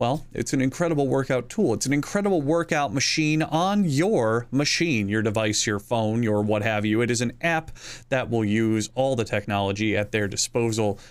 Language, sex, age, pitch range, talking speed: English, male, 30-49, 110-145 Hz, 190 wpm